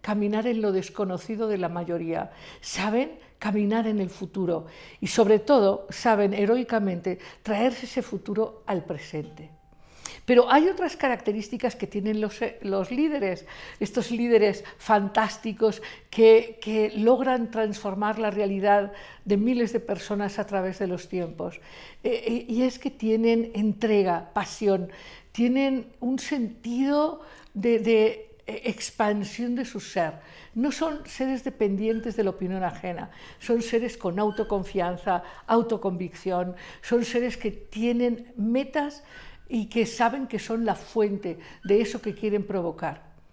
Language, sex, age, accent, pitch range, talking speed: Spanish, female, 50-69, Spanish, 200-245 Hz, 130 wpm